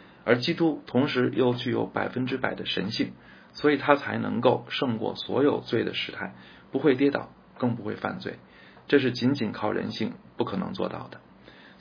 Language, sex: Chinese, male